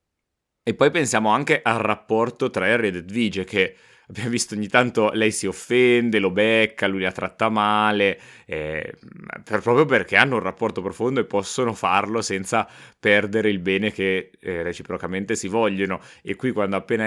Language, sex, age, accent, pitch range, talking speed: Italian, male, 30-49, native, 95-115 Hz, 170 wpm